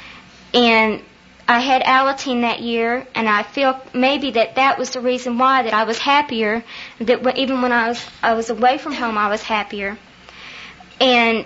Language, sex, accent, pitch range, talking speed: English, female, American, 220-260 Hz, 180 wpm